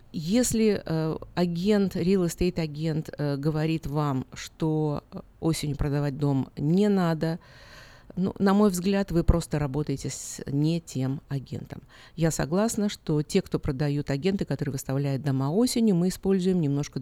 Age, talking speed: 50-69, 140 wpm